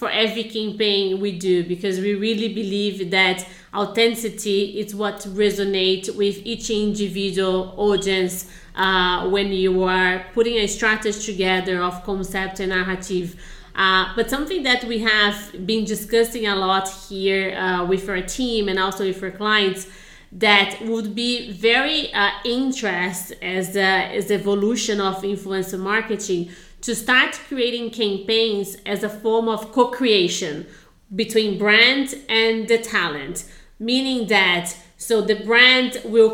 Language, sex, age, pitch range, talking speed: English, female, 30-49, 195-230 Hz, 135 wpm